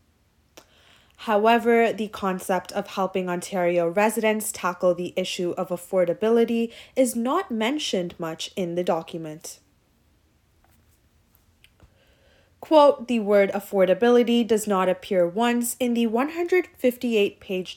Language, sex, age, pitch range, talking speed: English, female, 20-39, 175-235 Hz, 100 wpm